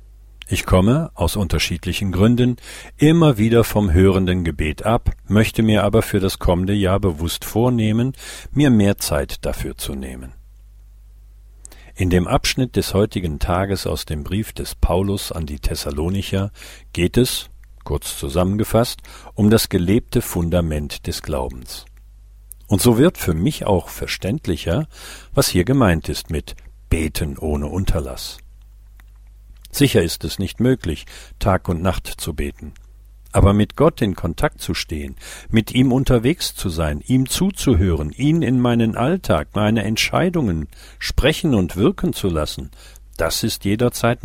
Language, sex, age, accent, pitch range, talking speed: German, male, 50-69, German, 80-110 Hz, 140 wpm